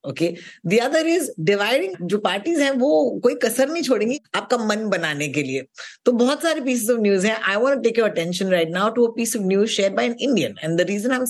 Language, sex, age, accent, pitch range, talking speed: Hindi, female, 20-39, native, 170-245 Hz, 95 wpm